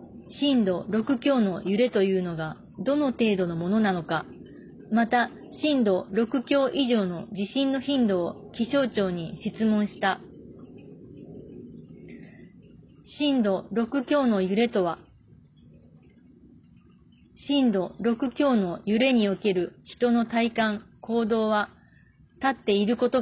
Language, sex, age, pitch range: Japanese, female, 30-49, 195-250 Hz